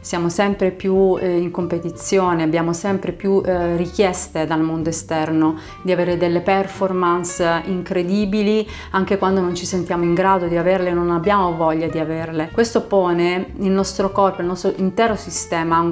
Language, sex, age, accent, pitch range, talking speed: Italian, female, 30-49, native, 170-195 Hz, 160 wpm